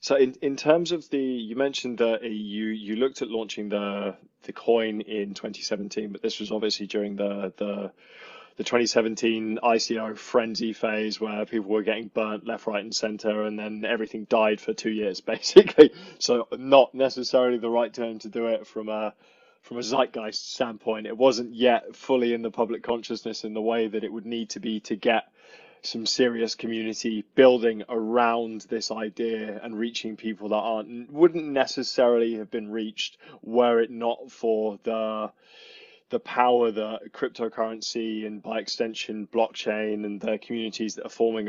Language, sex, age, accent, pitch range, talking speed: English, male, 20-39, British, 110-120 Hz, 175 wpm